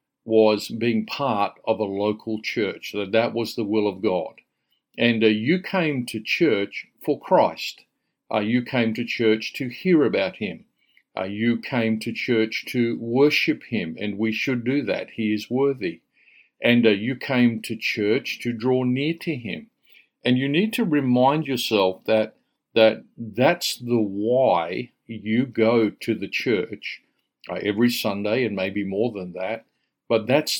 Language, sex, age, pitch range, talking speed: English, male, 50-69, 105-125 Hz, 165 wpm